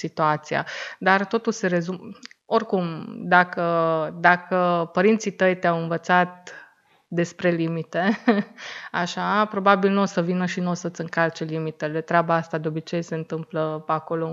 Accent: native